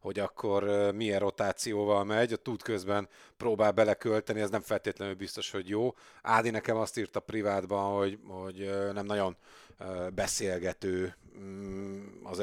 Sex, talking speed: male, 130 wpm